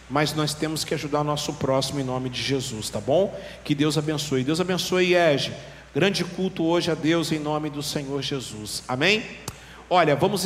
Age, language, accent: 40-59, Portuguese, Brazilian